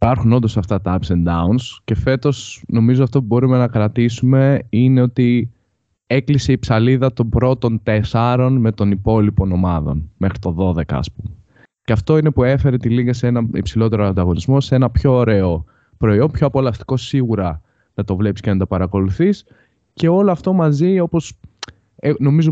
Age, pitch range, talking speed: 20-39, 95-125 Hz, 170 wpm